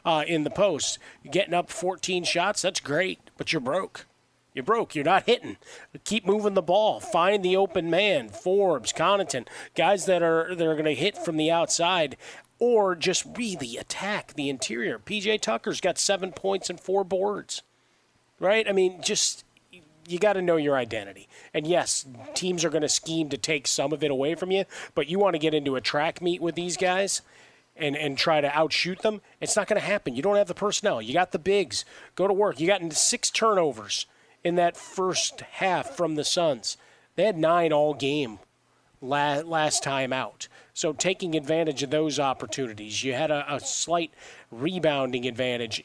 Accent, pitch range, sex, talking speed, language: American, 145-190 Hz, male, 190 wpm, English